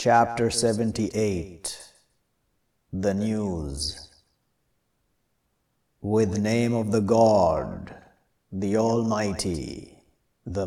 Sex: male